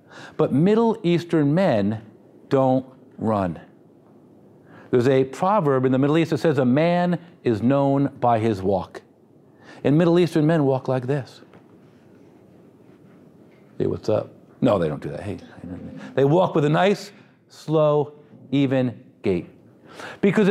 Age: 50-69